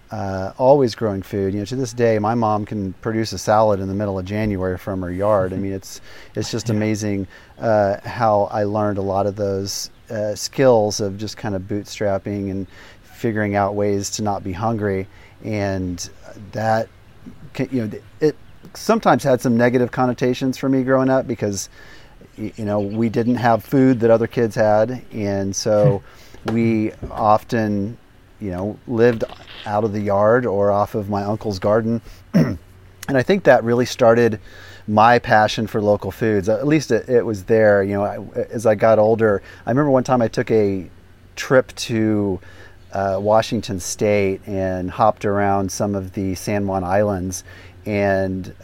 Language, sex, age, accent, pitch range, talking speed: English, male, 40-59, American, 95-115 Hz, 170 wpm